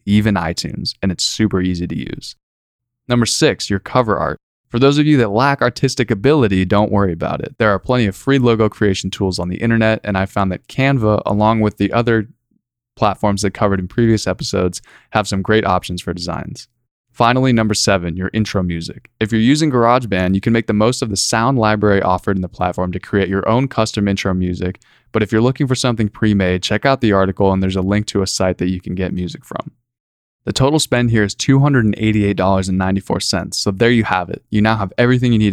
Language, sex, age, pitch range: English, male, 20-39, 95-120 Hz